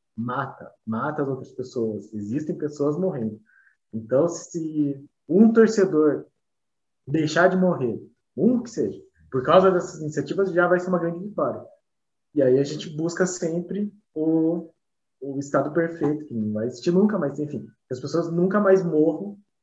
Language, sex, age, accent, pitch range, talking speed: Portuguese, male, 20-39, Brazilian, 135-180 Hz, 150 wpm